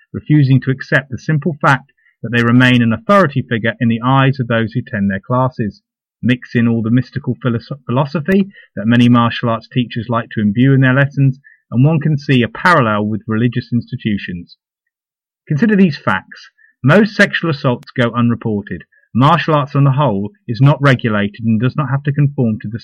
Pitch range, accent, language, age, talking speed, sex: 115-150 Hz, British, English, 30-49, 185 wpm, male